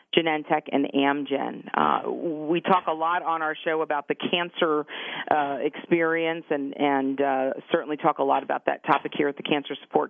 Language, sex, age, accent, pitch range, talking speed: English, female, 40-59, American, 145-165 Hz, 185 wpm